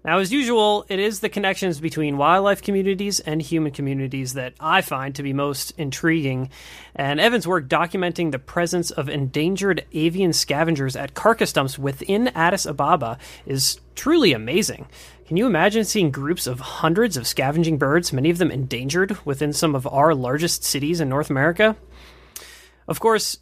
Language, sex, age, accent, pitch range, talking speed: English, male, 30-49, American, 140-180 Hz, 165 wpm